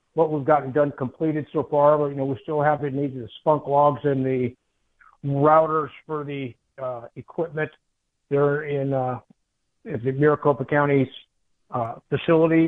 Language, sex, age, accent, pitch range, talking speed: English, male, 50-69, American, 140-160 Hz, 165 wpm